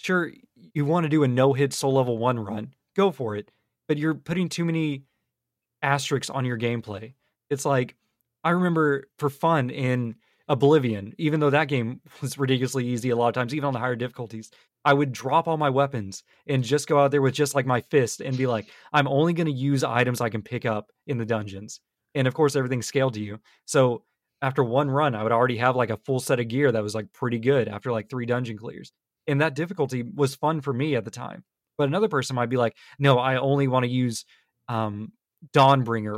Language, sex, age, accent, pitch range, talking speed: English, male, 20-39, American, 120-145 Hz, 220 wpm